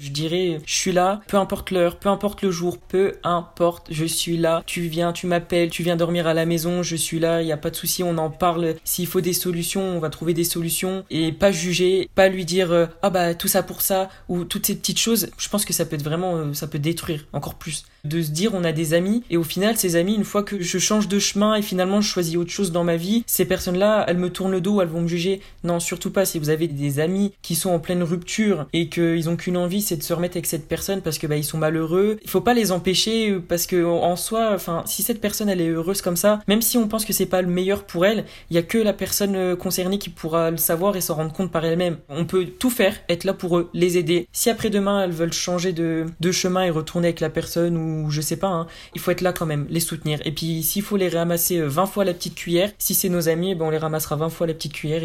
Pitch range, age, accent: 165-190 Hz, 20-39, French